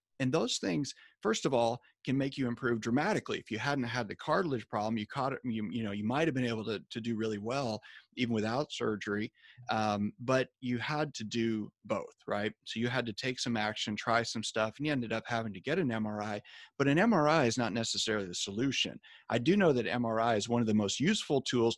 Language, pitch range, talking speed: English, 110-140 Hz, 230 wpm